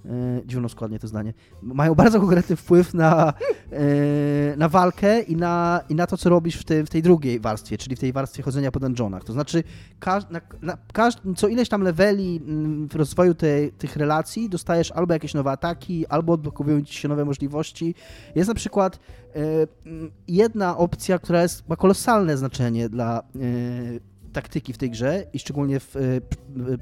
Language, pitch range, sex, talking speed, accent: Polish, 130-175 Hz, male, 170 wpm, native